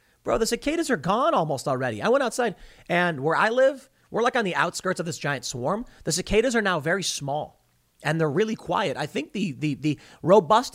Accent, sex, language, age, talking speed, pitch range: American, male, English, 30-49, 220 wpm, 125-180 Hz